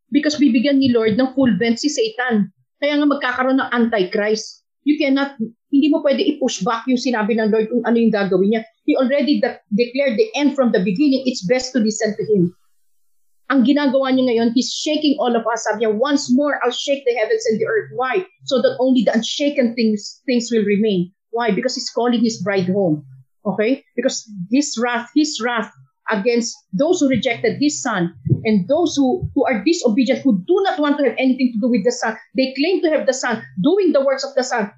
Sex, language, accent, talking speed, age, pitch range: female, Filipino, native, 215 wpm, 40-59, 215-280 Hz